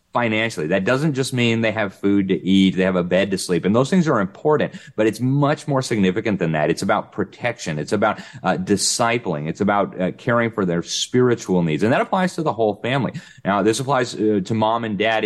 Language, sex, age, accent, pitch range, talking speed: English, male, 30-49, American, 95-120 Hz, 230 wpm